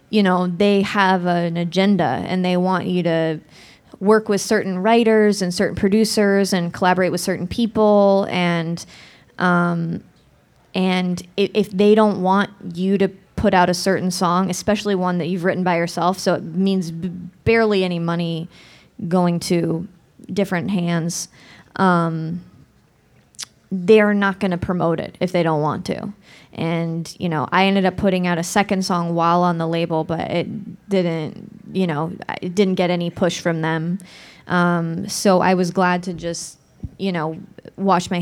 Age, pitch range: 20-39, 170-195 Hz